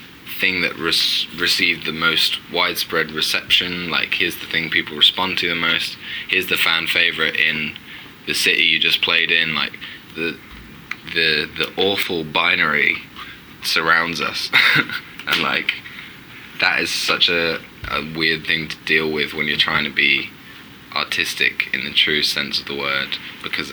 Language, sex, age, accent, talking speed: English, male, 20-39, British, 155 wpm